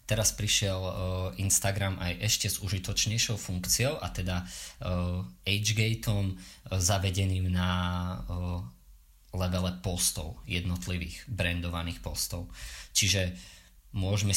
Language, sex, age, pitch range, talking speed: English, male, 20-39, 90-100 Hz, 85 wpm